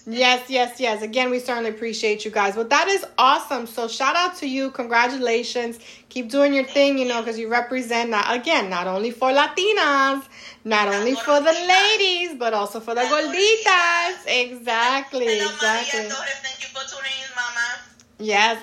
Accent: American